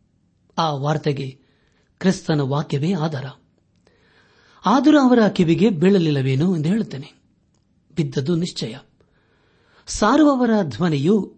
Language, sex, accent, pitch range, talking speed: Kannada, male, native, 140-205 Hz, 80 wpm